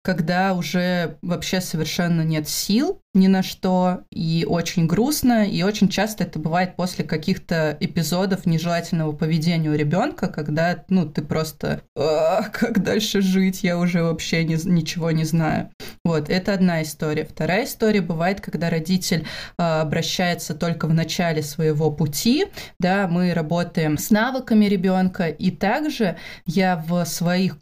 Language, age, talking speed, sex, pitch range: Russian, 20-39, 140 wpm, female, 165-195 Hz